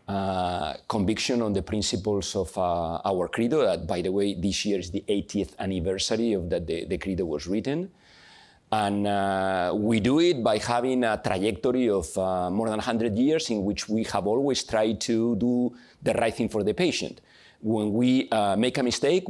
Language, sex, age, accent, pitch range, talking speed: English, male, 40-59, Spanish, 100-125 Hz, 190 wpm